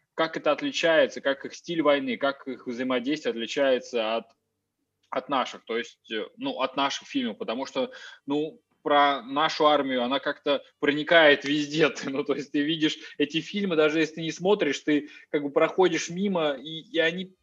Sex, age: male, 20-39